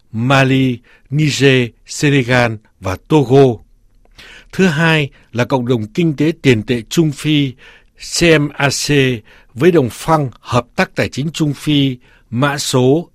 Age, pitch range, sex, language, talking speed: 60-79, 120-155 Hz, male, Vietnamese, 130 wpm